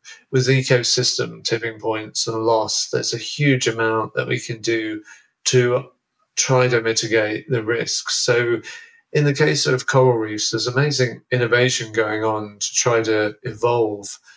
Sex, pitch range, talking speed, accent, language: male, 110-125 Hz, 155 wpm, British, English